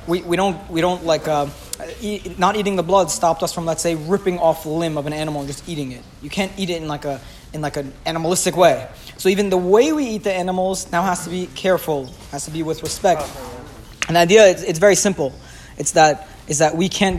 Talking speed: 250 wpm